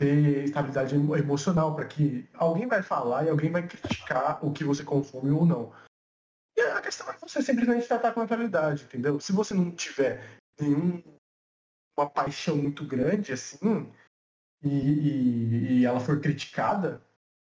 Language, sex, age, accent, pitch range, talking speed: Portuguese, male, 20-39, Brazilian, 135-180 Hz, 155 wpm